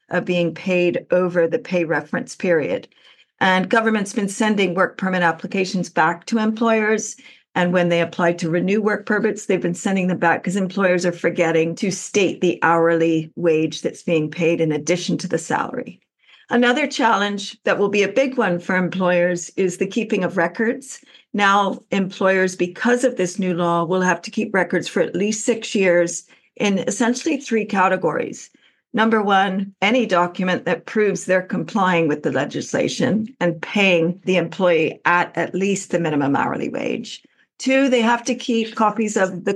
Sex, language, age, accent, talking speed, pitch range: female, English, 50-69, American, 175 wpm, 175-220 Hz